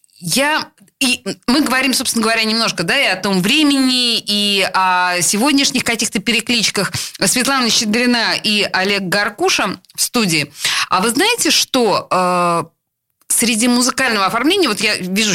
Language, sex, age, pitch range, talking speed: Russian, female, 20-39, 180-255 Hz, 125 wpm